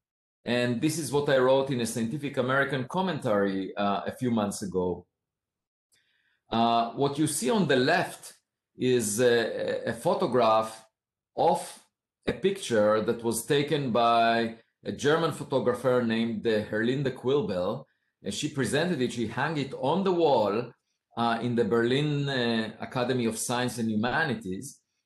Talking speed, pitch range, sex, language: 145 wpm, 115-145 Hz, male, English